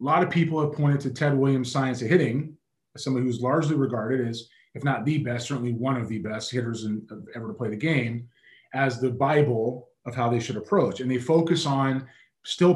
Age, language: 20-39, English